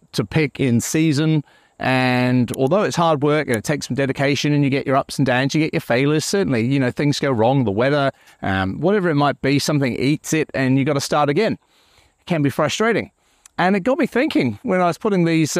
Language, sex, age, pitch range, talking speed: English, male, 40-59, 135-165 Hz, 235 wpm